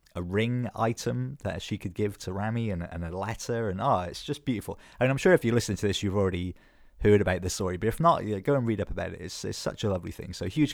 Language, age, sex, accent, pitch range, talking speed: English, 20-39, male, British, 95-110 Hz, 290 wpm